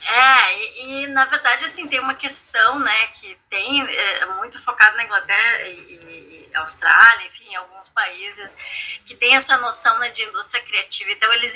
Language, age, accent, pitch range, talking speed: Portuguese, 20-39, Brazilian, 240-320 Hz, 175 wpm